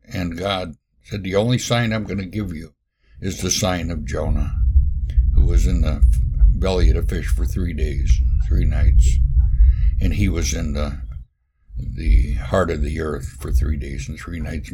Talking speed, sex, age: 185 wpm, male, 60-79